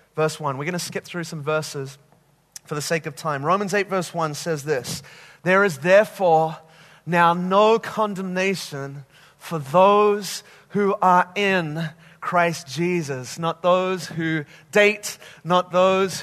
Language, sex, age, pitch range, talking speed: English, male, 30-49, 170-220 Hz, 145 wpm